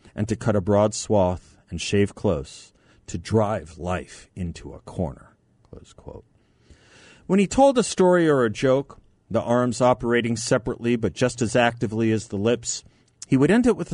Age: 40-59